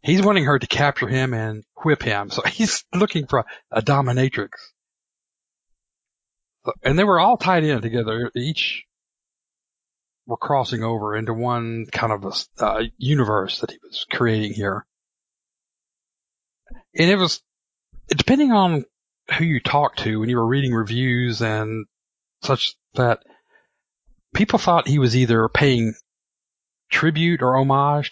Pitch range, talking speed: 110-140 Hz, 140 wpm